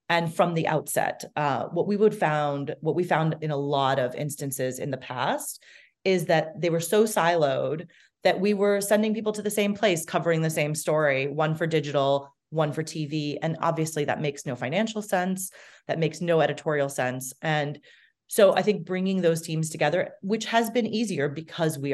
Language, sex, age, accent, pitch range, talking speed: English, female, 30-49, American, 135-180 Hz, 195 wpm